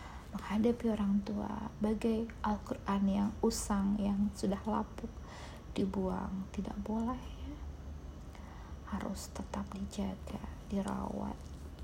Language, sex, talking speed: Indonesian, female, 90 wpm